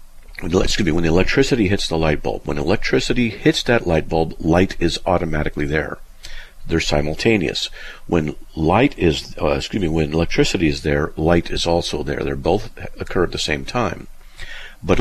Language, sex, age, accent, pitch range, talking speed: English, male, 50-69, American, 75-95 Hz, 170 wpm